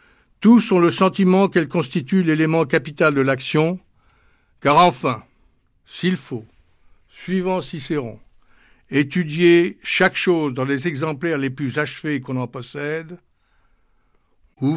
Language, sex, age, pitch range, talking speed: French, male, 60-79, 125-165 Hz, 120 wpm